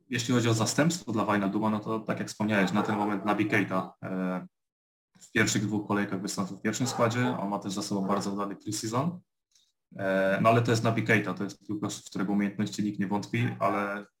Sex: male